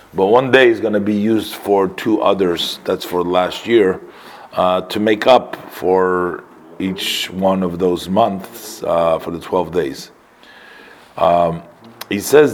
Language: English